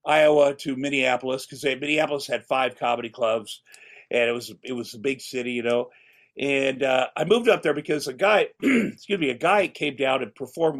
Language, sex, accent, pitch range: English, male, American, 125-160 Hz